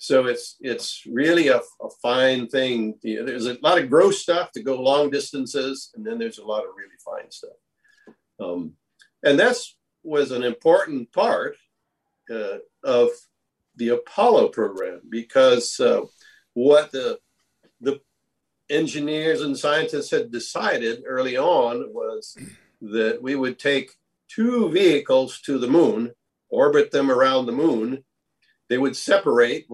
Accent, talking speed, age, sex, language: American, 145 wpm, 50-69, male, English